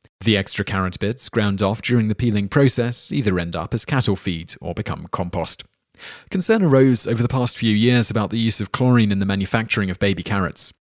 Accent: British